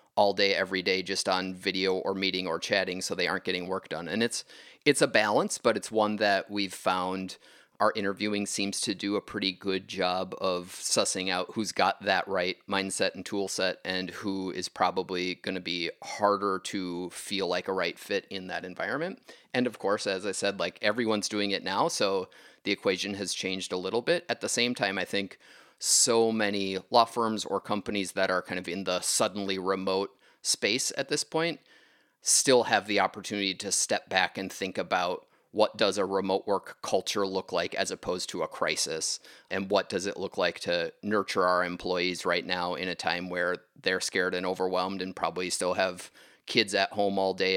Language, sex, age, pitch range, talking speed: English, male, 30-49, 90-100 Hz, 200 wpm